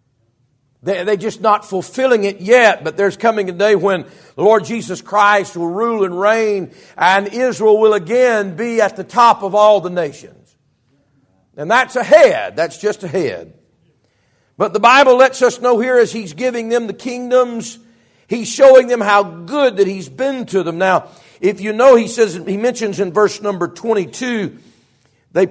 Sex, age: male, 50-69